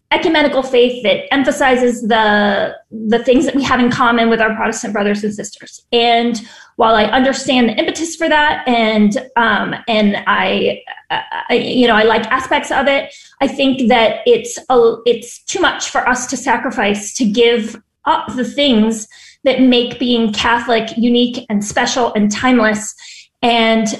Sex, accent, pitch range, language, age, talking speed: female, American, 225-260 Hz, English, 30-49, 165 wpm